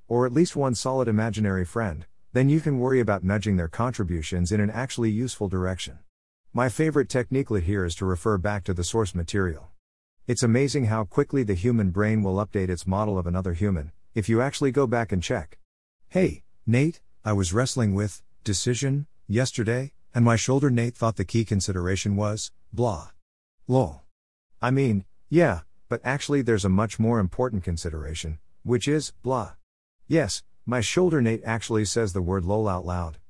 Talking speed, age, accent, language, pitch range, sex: 175 wpm, 50-69, American, English, 90-120 Hz, male